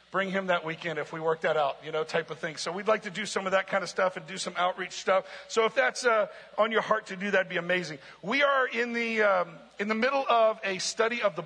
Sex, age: male, 50-69